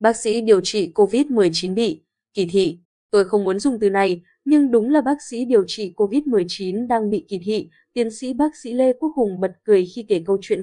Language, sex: Vietnamese, female